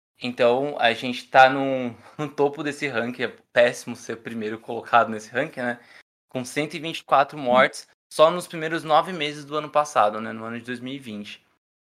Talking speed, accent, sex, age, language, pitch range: 170 wpm, Brazilian, male, 20-39, Portuguese, 115-150 Hz